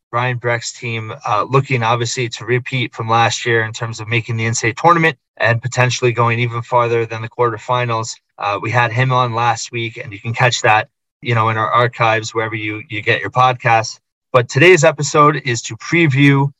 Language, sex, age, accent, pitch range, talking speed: English, male, 30-49, American, 120-135 Hz, 200 wpm